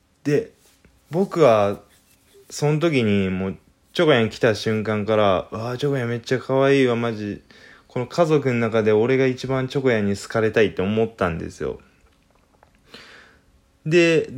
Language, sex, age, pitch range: Japanese, male, 20-39, 95-130 Hz